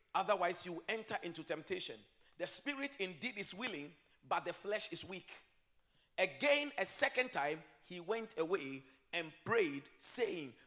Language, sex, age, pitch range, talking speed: English, male, 40-59, 175-260 Hz, 140 wpm